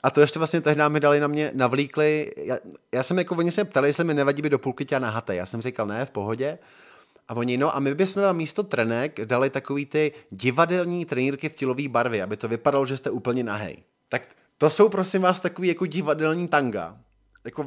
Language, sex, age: Czech, male, 20-39